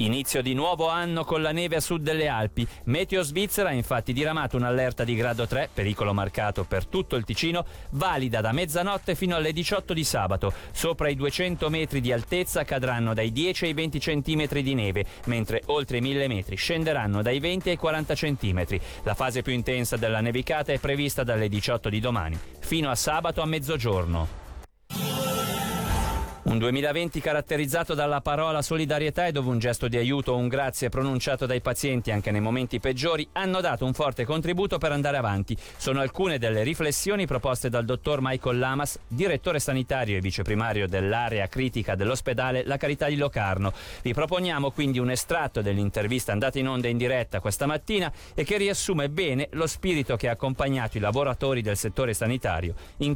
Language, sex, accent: Italian, male, native